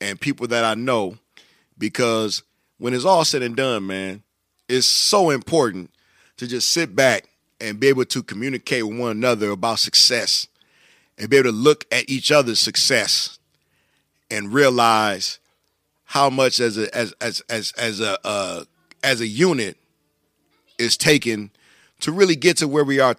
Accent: American